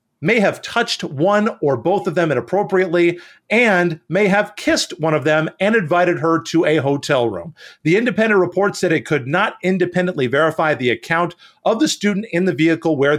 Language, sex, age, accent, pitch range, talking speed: English, male, 40-59, American, 160-205 Hz, 185 wpm